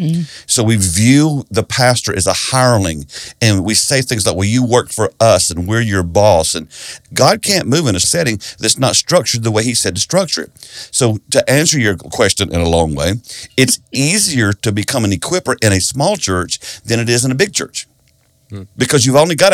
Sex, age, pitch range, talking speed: male, 50-69, 100-135 Hz, 210 wpm